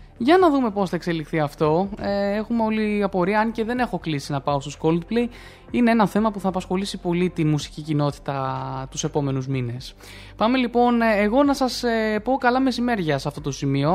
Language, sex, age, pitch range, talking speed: Greek, male, 20-39, 150-205 Hz, 195 wpm